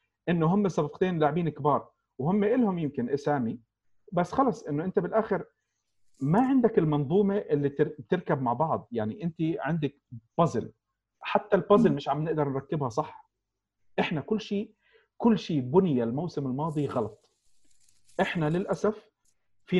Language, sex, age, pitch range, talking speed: Arabic, male, 40-59, 120-180 Hz, 135 wpm